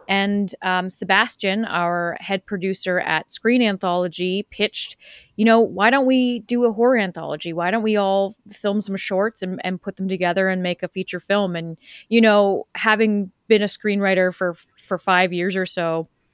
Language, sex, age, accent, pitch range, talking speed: English, female, 30-49, American, 180-210 Hz, 180 wpm